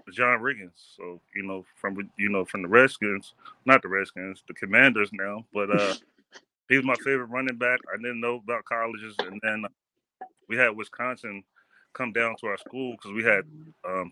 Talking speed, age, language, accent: 185 wpm, 30-49, English, American